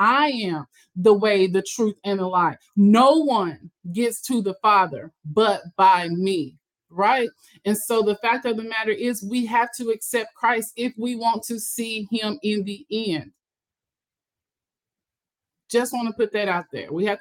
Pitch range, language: 195-225 Hz, English